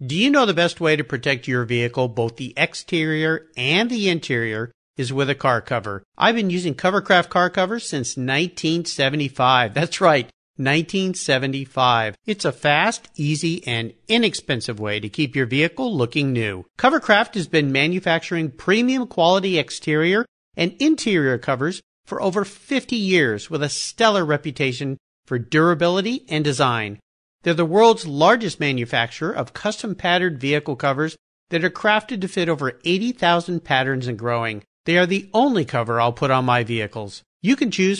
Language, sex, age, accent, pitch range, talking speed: English, male, 50-69, American, 135-205 Hz, 160 wpm